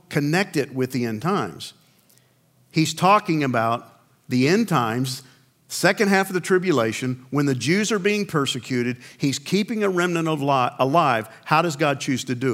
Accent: American